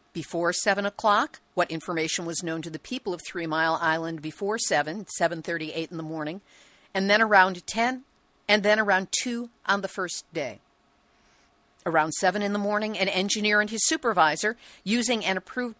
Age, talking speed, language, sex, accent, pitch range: 50-69, 175 wpm, English, female, American, 170-230 Hz